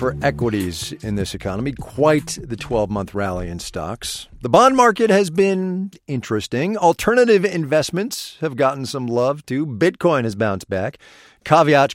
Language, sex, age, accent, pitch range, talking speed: English, male, 40-59, American, 115-185 Hz, 145 wpm